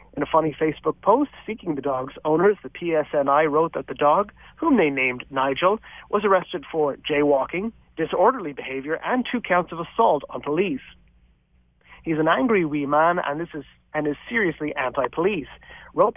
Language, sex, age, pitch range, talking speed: English, male, 40-59, 140-190 Hz, 160 wpm